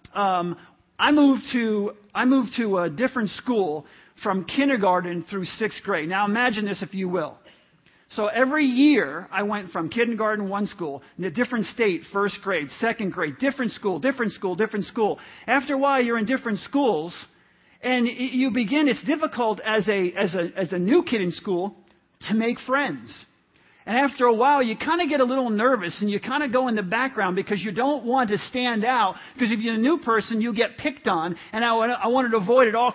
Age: 50-69